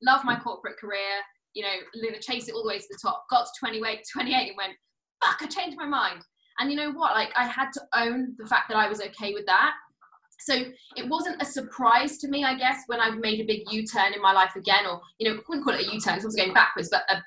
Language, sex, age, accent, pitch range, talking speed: English, female, 10-29, British, 200-255 Hz, 270 wpm